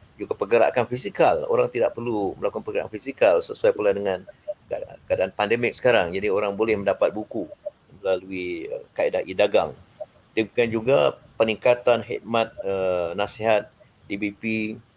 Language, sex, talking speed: Malay, male, 115 wpm